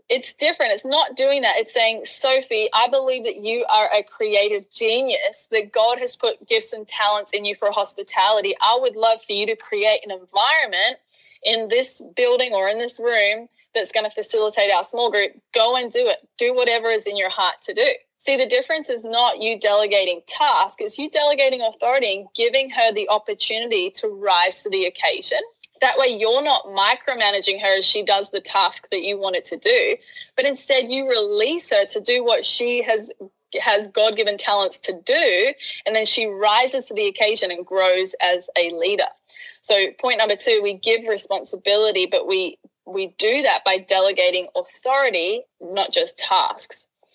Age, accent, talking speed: 10-29, Australian, 185 wpm